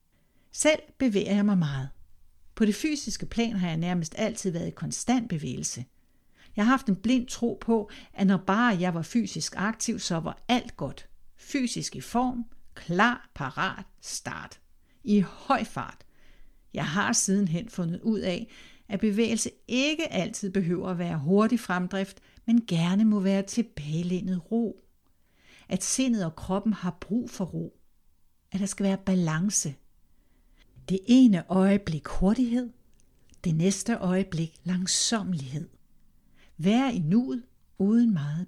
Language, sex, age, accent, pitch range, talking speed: Danish, female, 60-79, native, 165-225 Hz, 140 wpm